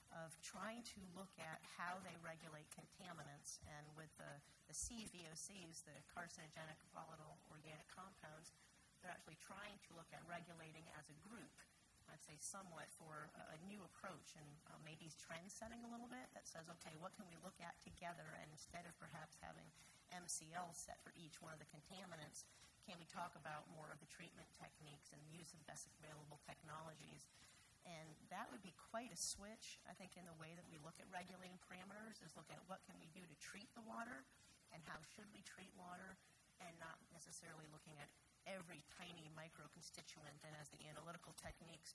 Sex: female